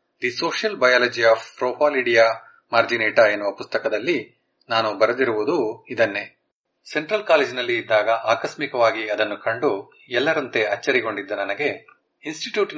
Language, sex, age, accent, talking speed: English, male, 30-49, Indian, 110 wpm